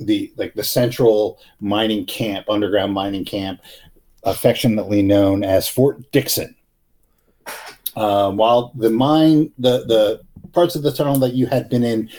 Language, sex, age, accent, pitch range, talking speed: English, male, 50-69, American, 105-140 Hz, 145 wpm